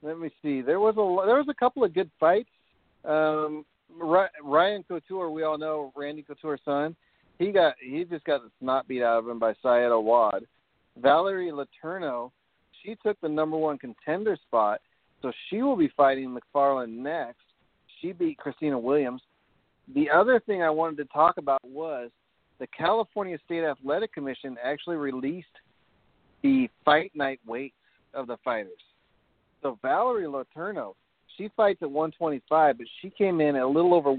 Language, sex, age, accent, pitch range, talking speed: English, male, 40-59, American, 135-185 Hz, 165 wpm